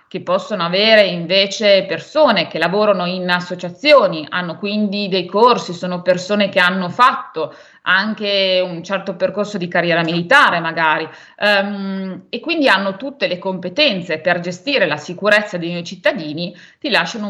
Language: Italian